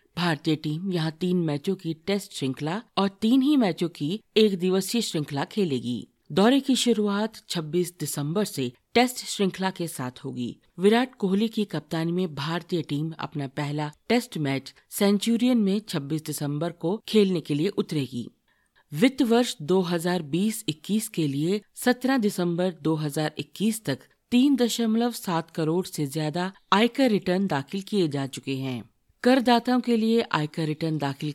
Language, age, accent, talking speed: Hindi, 50-69, native, 145 wpm